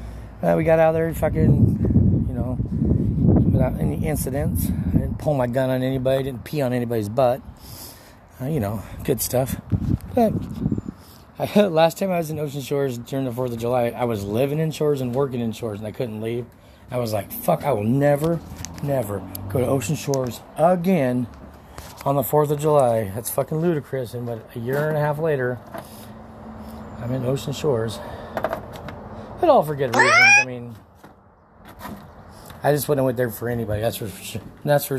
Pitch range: 110-145 Hz